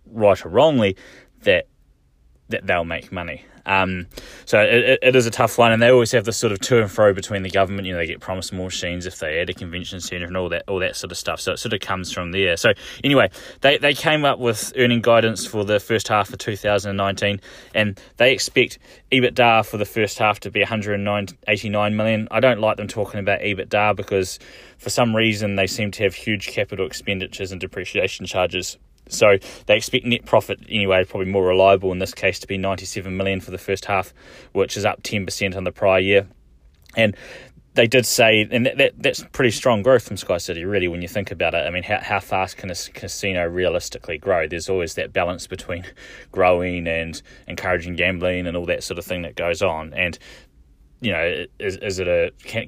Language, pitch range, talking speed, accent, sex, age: English, 90-110 Hz, 220 wpm, Australian, male, 10-29